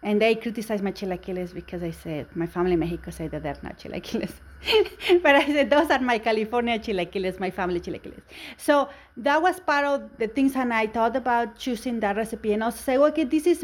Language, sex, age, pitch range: English, female, 30-49, 205-275 Hz